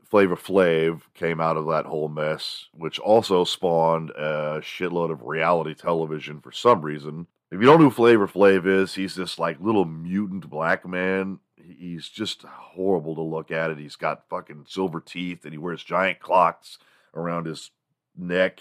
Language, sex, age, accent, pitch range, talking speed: English, male, 40-59, American, 80-100 Hz, 175 wpm